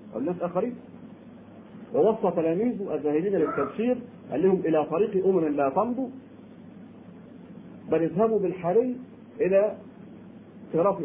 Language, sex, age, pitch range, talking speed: Arabic, male, 50-69, 160-220 Hz, 100 wpm